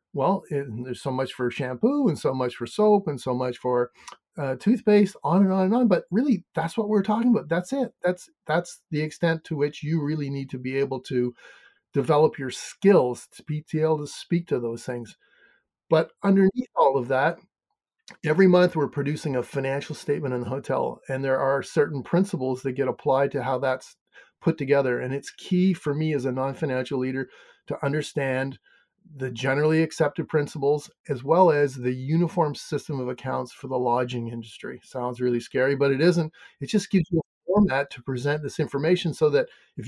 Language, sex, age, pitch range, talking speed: English, male, 40-59, 130-170 Hz, 195 wpm